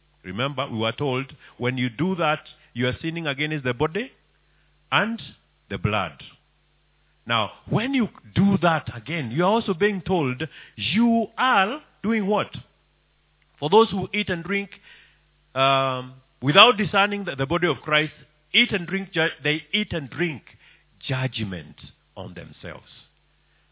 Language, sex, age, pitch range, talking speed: English, male, 50-69, 135-195 Hz, 140 wpm